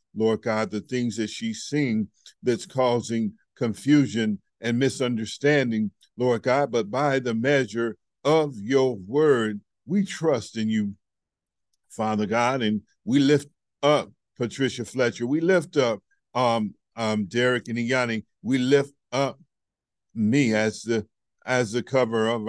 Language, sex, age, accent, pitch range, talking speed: English, male, 50-69, American, 115-140 Hz, 135 wpm